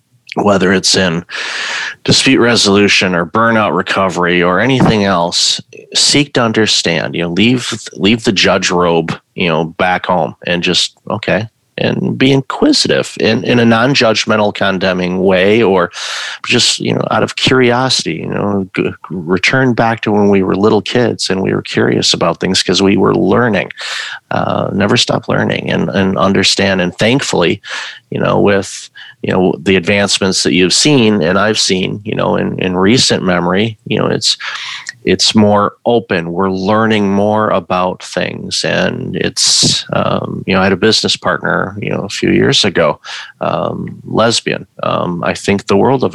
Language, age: English, 30-49